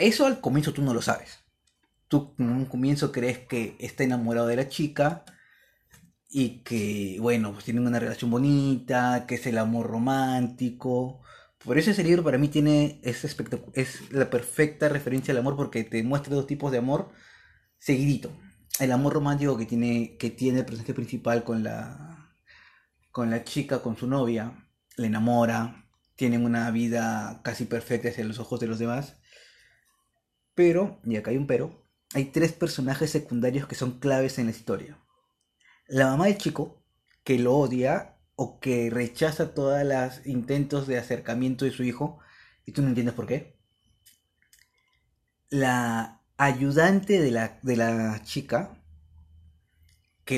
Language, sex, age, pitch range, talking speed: Spanish, male, 30-49, 115-140 Hz, 155 wpm